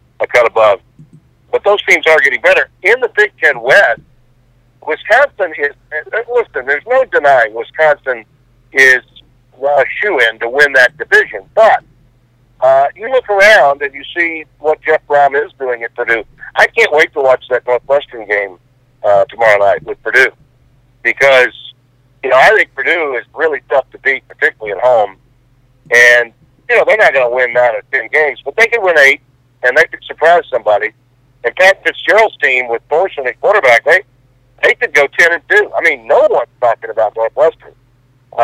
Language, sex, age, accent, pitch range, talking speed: English, male, 60-79, American, 125-175 Hz, 180 wpm